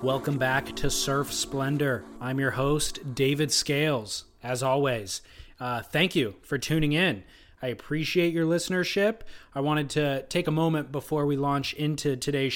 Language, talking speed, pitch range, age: English, 160 wpm, 135-155 Hz, 20-39